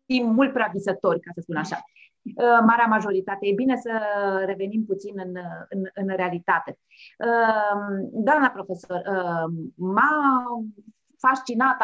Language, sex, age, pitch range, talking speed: Romanian, female, 30-49, 195-235 Hz, 110 wpm